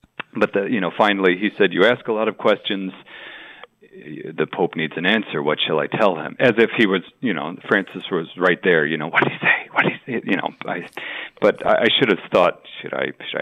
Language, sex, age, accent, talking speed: English, male, 50-69, American, 240 wpm